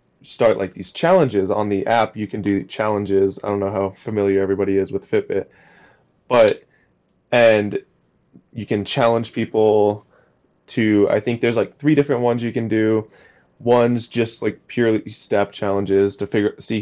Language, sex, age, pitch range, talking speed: English, male, 20-39, 100-110 Hz, 165 wpm